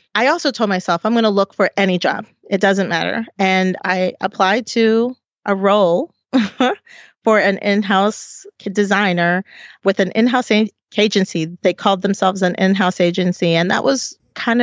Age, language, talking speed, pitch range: 30-49, English, 155 wpm, 180-225 Hz